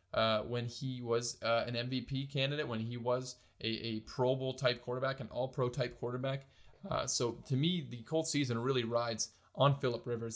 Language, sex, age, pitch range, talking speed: English, male, 20-39, 115-135 Hz, 180 wpm